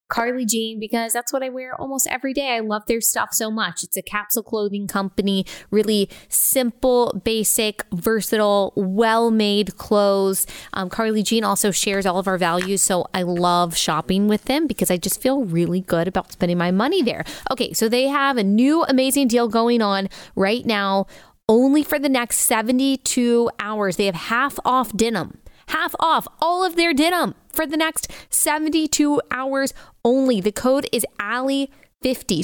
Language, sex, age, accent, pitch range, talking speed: English, female, 20-39, American, 195-255 Hz, 170 wpm